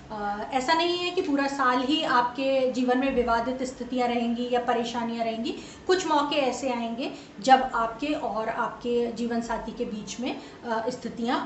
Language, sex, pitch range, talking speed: Hindi, female, 235-275 Hz, 155 wpm